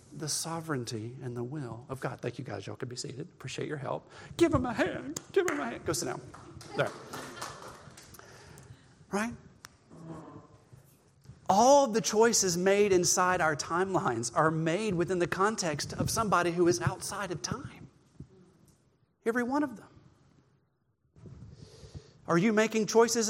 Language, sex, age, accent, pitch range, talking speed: English, male, 40-59, American, 135-190 Hz, 150 wpm